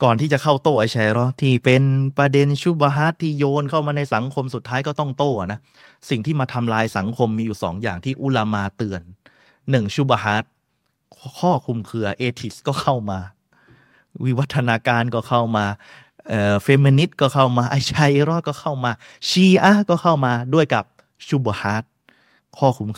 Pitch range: 110-140 Hz